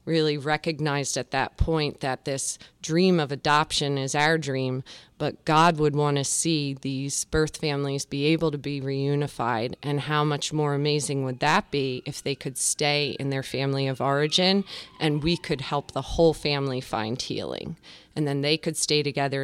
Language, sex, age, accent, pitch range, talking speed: English, female, 30-49, American, 130-150 Hz, 180 wpm